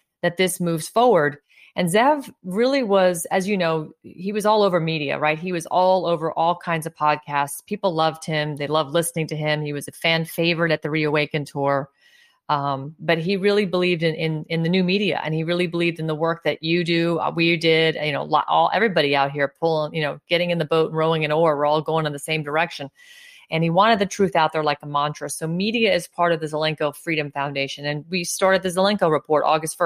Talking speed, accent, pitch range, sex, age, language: 230 wpm, American, 155-175 Hz, female, 30-49, English